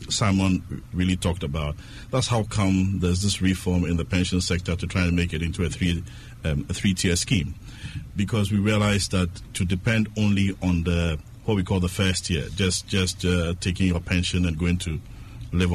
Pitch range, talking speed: 90-110 Hz, 195 wpm